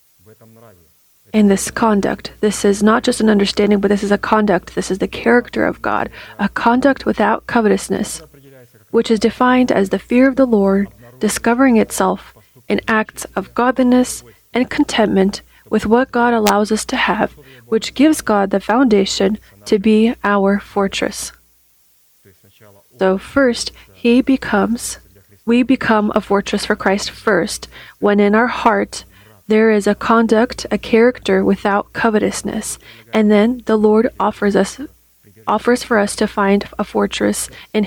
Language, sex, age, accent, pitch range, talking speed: English, female, 30-49, American, 195-230 Hz, 150 wpm